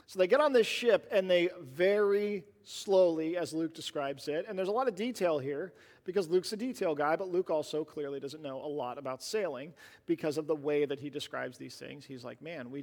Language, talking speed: English, 230 wpm